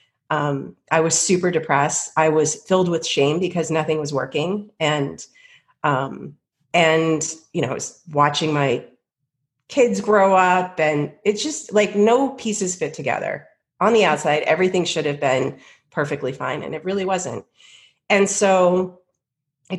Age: 30-49